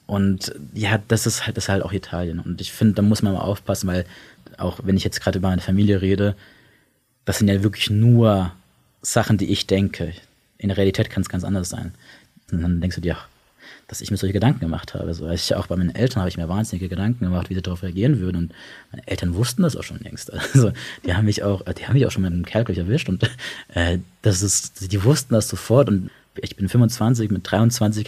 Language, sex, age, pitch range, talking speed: German, male, 20-39, 95-120 Hz, 235 wpm